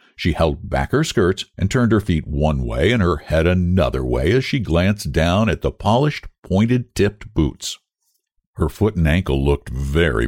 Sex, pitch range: male, 80-120 Hz